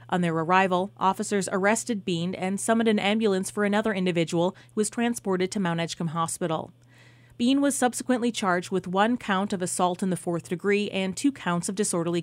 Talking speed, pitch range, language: 185 wpm, 170-215 Hz, English